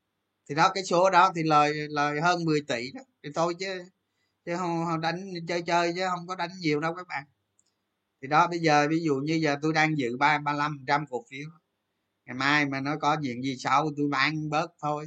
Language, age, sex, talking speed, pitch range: Vietnamese, 20-39, male, 220 wpm, 135-175 Hz